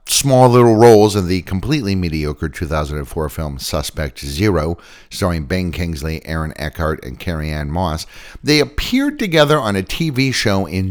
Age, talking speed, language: 50-69, 155 wpm, English